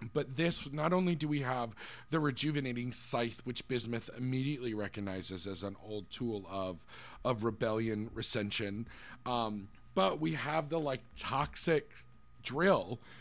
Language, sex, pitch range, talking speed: English, male, 105-135 Hz, 135 wpm